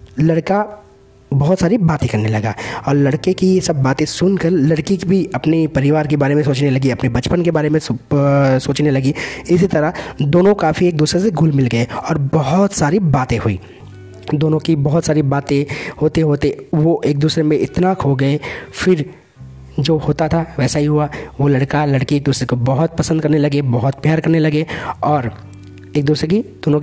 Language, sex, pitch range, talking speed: Hindi, male, 130-160 Hz, 190 wpm